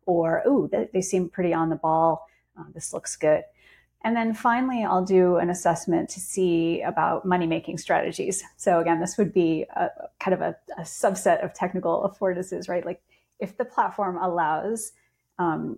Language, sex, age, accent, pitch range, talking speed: English, female, 30-49, American, 170-205 Hz, 170 wpm